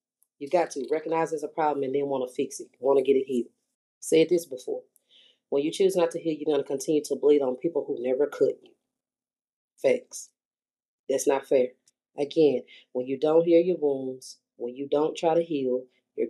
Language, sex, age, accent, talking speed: English, female, 30-49, American, 210 wpm